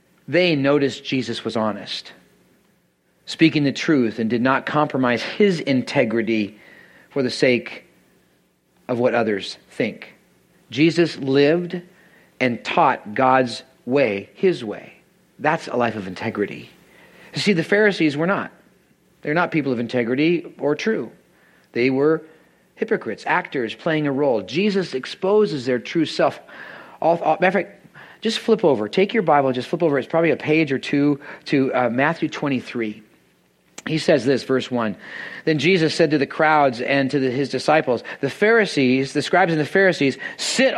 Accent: American